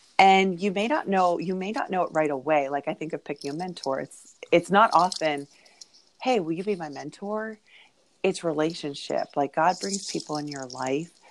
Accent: American